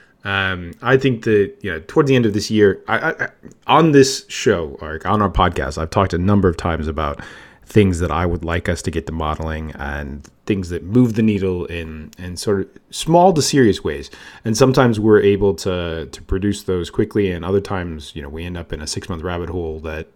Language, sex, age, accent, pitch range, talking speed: English, male, 30-49, American, 85-110 Hz, 225 wpm